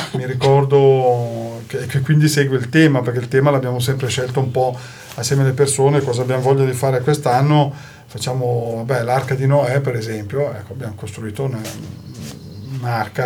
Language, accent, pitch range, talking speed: Italian, native, 120-145 Hz, 165 wpm